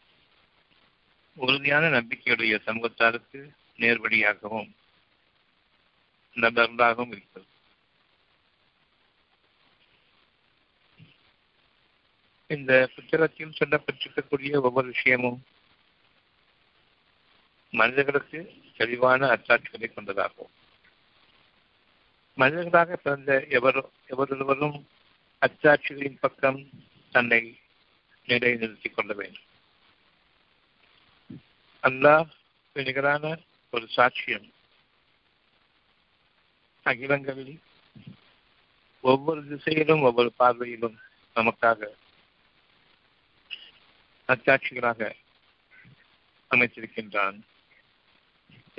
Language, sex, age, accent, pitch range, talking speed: Tamil, male, 60-79, native, 120-145 Hz, 45 wpm